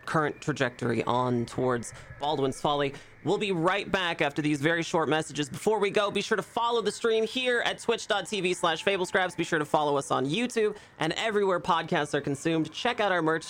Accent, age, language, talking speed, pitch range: American, 30-49, English, 200 wpm, 145-220 Hz